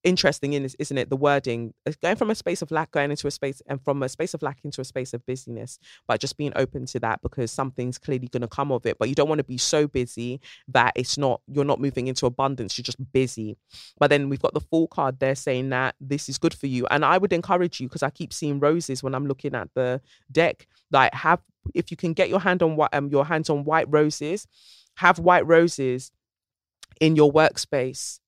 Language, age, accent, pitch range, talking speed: English, 20-39, British, 130-150 Hz, 240 wpm